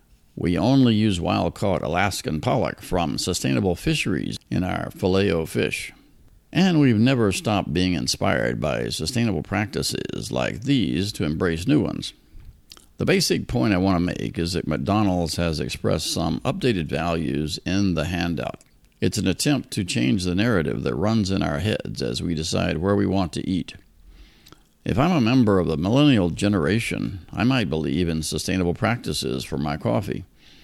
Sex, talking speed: male, 165 wpm